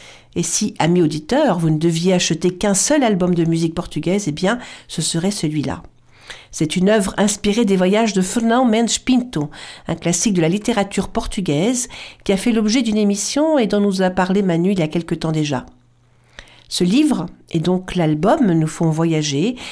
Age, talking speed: 50-69, 185 wpm